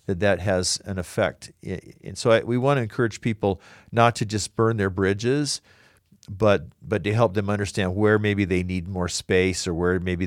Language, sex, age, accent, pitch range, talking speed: English, male, 50-69, American, 85-105 Hz, 185 wpm